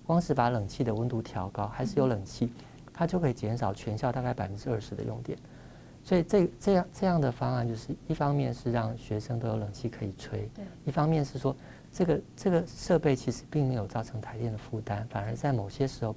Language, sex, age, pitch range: Chinese, male, 50-69, 110-135 Hz